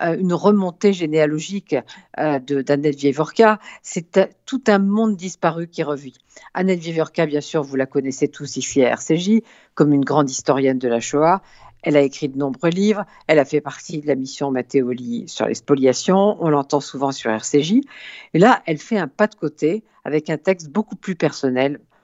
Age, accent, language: 50-69, French, French